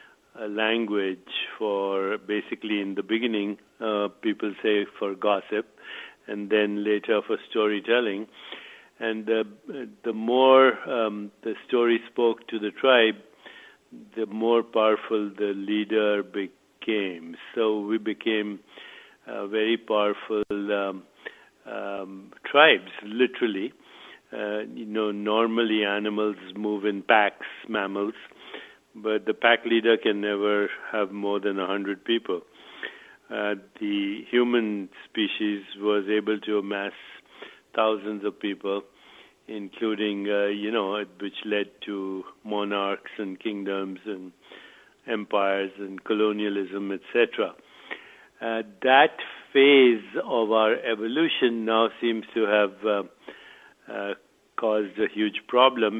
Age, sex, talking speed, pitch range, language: 60-79, male, 115 wpm, 100-110 Hz, English